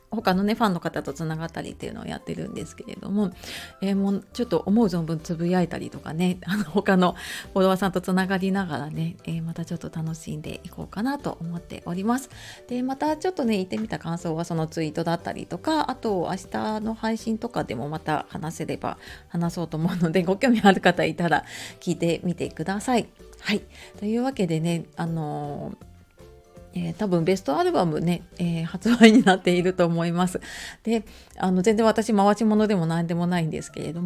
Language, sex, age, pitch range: Japanese, female, 30-49, 170-220 Hz